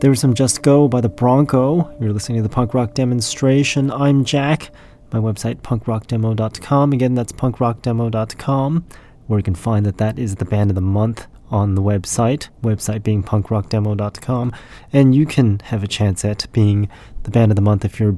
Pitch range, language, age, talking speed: 105-125 Hz, English, 30-49, 180 wpm